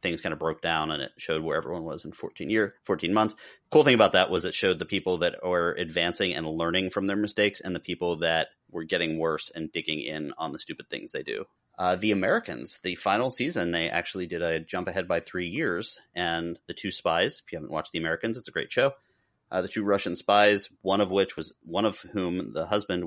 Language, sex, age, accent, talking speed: English, male, 30-49, American, 240 wpm